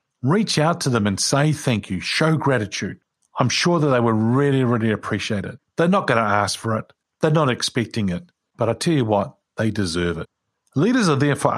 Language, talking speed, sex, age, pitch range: English, 220 wpm, male, 50-69, 105-140 Hz